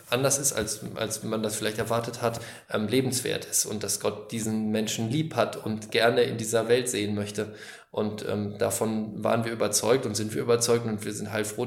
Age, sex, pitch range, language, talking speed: 20-39, male, 110-125 Hz, Persian, 210 wpm